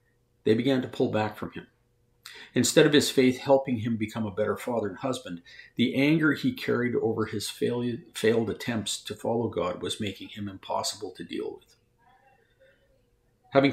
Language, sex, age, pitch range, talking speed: English, male, 50-69, 105-130 Hz, 165 wpm